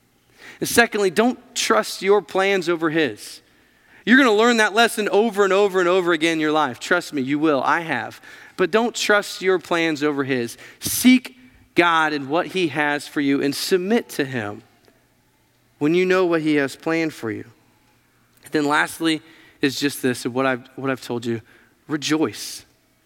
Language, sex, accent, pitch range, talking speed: English, male, American, 135-190 Hz, 175 wpm